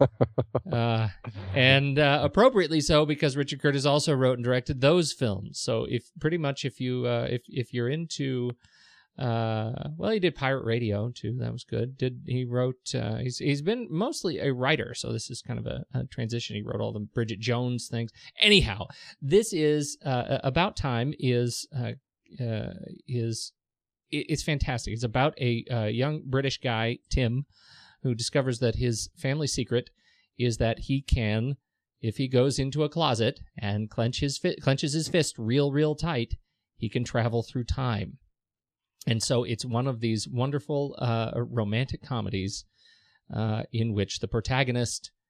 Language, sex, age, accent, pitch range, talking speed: English, male, 40-59, American, 115-140 Hz, 165 wpm